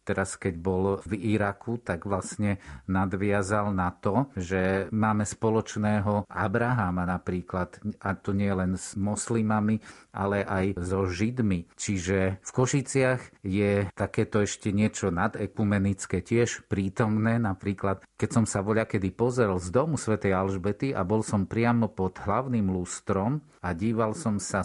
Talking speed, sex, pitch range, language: 135 wpm, male, 95-115 Hz, Slovak